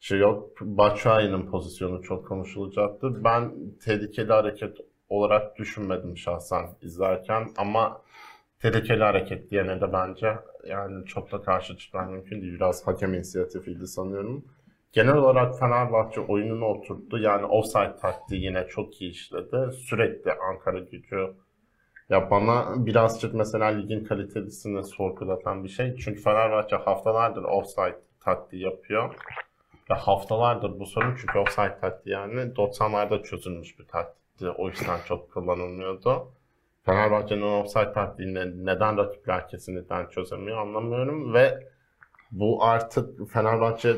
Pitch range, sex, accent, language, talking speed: 95-115 Hz, male, native, Turkish, 120 wpm